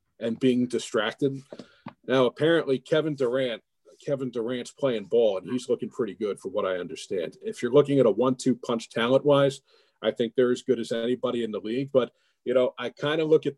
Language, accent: English, American